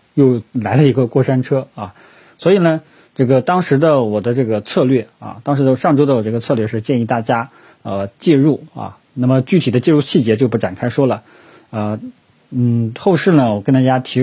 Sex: male